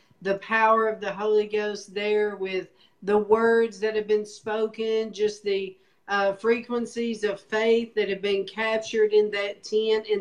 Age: 50-69